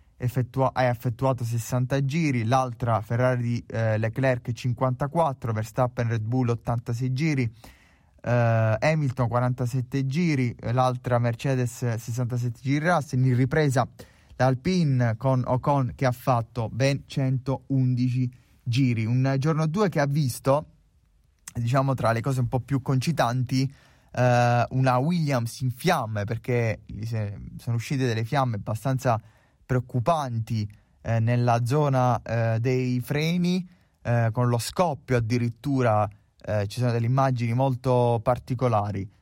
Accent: native